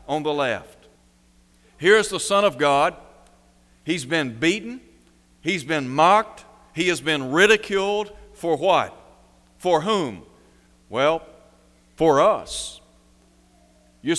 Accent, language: American, English